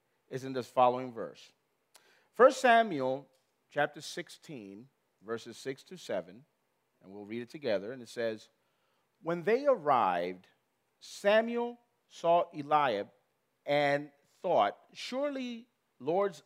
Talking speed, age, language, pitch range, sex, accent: 115 wpm, 40-59, English, 140-215 Hz, male, American